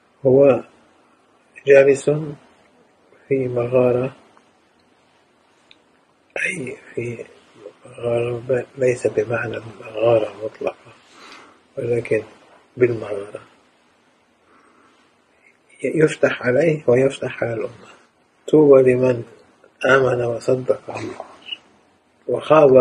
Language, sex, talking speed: Indonesian, male, 65 wpm